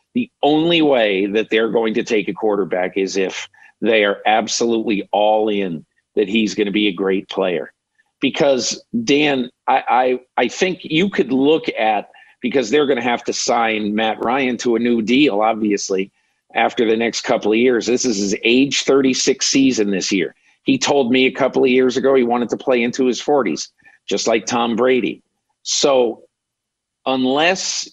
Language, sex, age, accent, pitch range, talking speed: English, male, 50-69, American, 110-135 Hz, 180 wpm